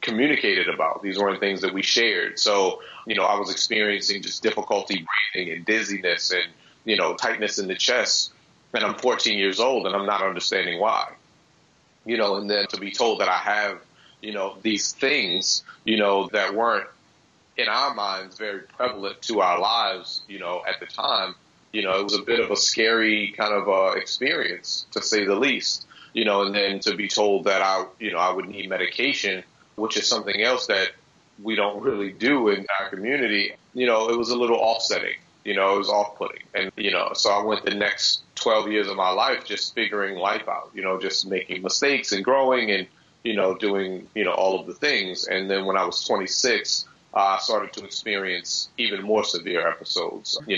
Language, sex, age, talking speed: English, male, 30-49, 205 wpm